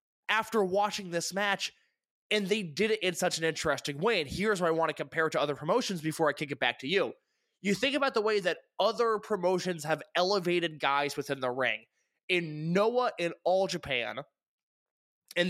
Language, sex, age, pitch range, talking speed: English, male, 20-39, 165-220 Hz, 200 wpm